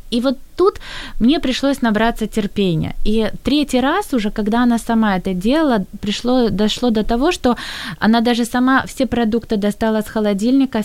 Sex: female